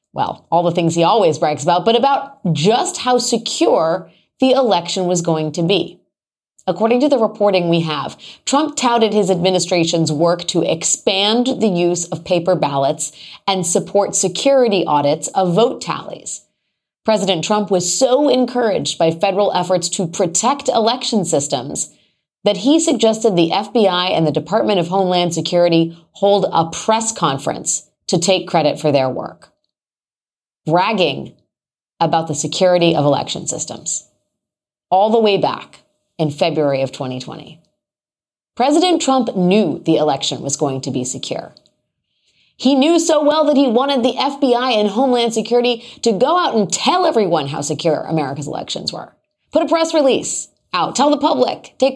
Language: English